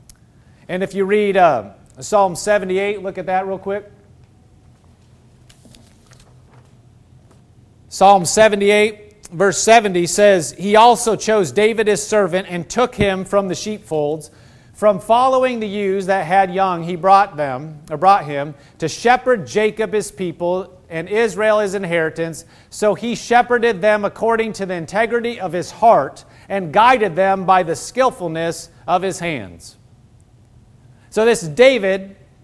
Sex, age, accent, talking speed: male, 40-59, American, 135 wpm